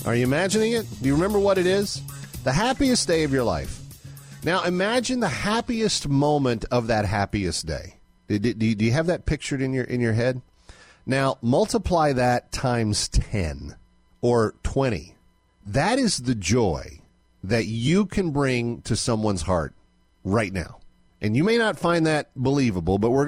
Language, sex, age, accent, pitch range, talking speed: English, male, 40-59, American, 95-140 Hz, 160 wpm